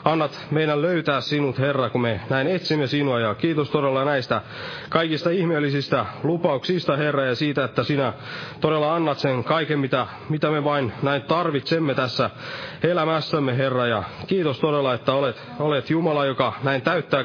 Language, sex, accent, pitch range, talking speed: Finnish, male, native, 125-155 Hz, 155 wpm